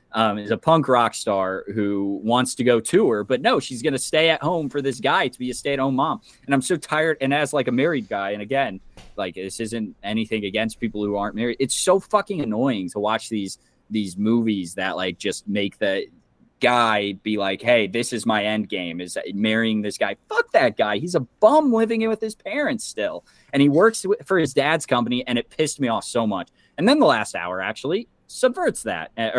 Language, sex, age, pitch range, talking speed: English, male, 20-39, 95-140 Hz, 230 wpm